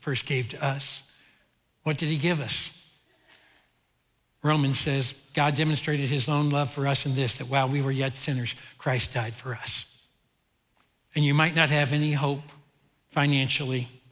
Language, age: English, 60-79